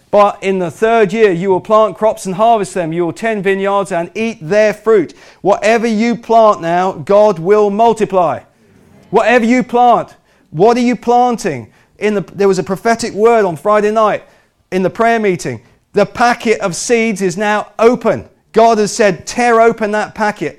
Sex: male